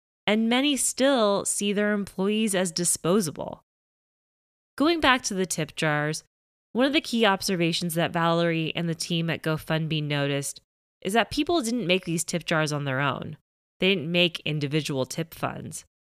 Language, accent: English, American